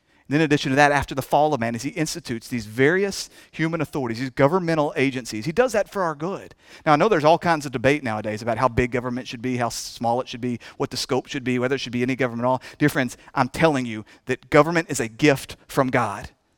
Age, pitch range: 40-59, 135-220 Hz